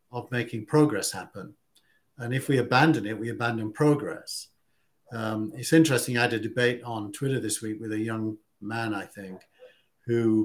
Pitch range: 110-140 Hz